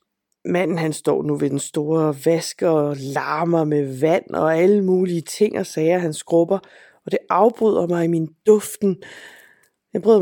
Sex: female